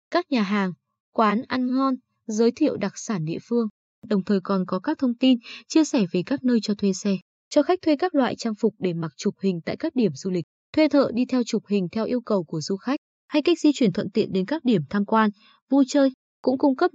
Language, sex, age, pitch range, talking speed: Vietnamese, female, 20-39, 195-260 Hz, 250 wpm